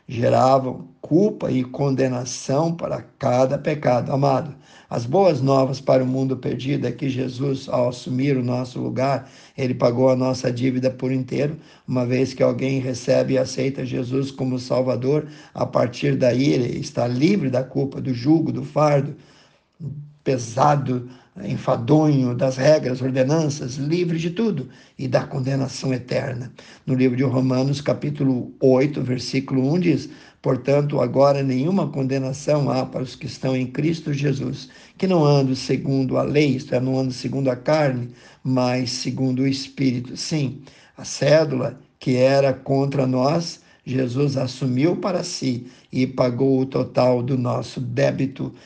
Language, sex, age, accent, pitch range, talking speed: Portuguese, male, 50-69, Brazilian, 130-145 Hz, 150 wpm